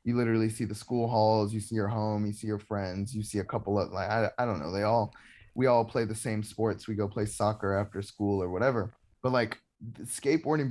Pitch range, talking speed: 100-115 Hz, 245 wpm